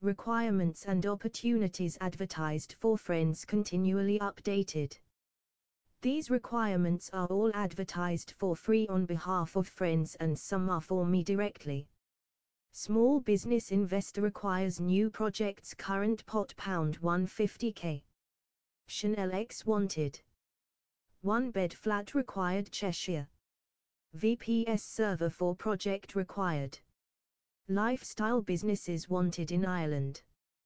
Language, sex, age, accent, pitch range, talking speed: English, female, 20-39, British, 170-210 Hz, 105 wpm